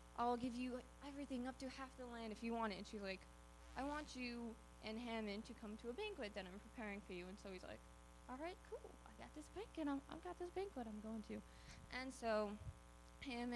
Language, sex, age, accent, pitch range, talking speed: English, female, 20-39, American, 180-235 Hz, 230 wpm